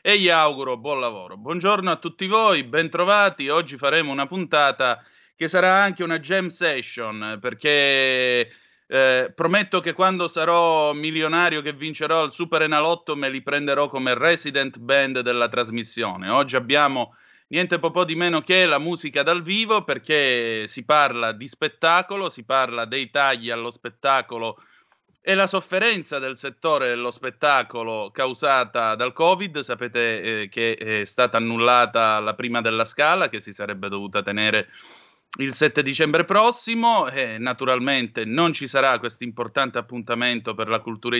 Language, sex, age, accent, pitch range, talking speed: Italian, male, 30-49, native, 120-165 Hz, 150 wpm